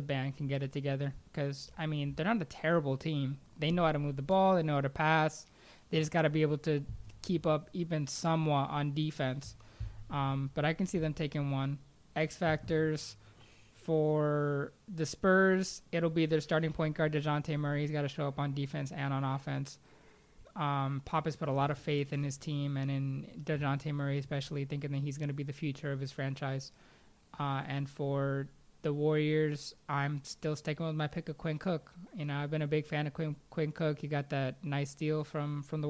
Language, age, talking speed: English, 20-39, 215 wpm